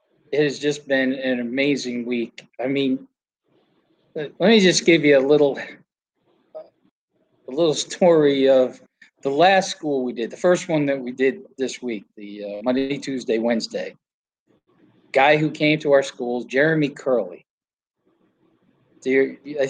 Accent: American